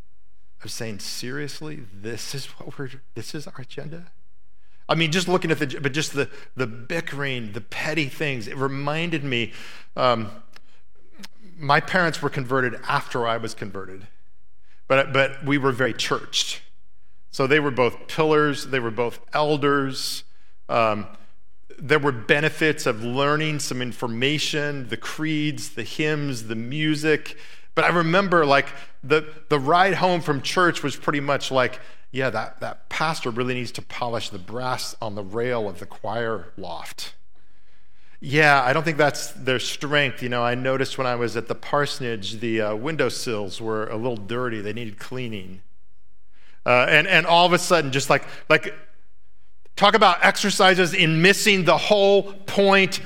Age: 40-59